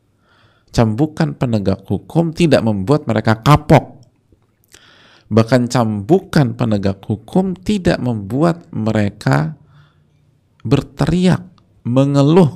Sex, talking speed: male, 75 wpm